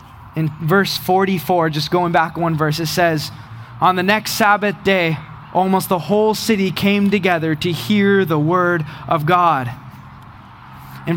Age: 20-39